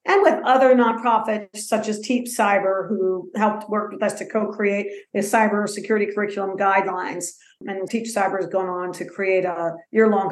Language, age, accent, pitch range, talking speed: English, 50-69, American, 195-230 Hz, 170 wpm